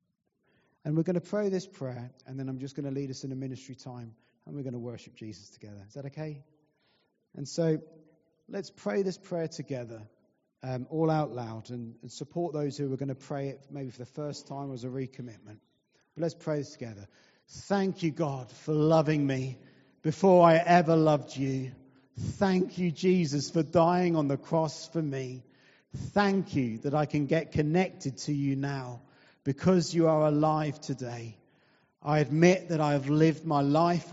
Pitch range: 135-165 Hz